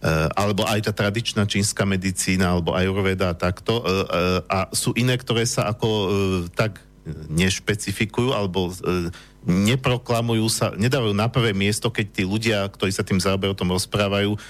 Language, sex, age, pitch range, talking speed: Slovak, male, 50-69, 95-115 Hz, 135 wpm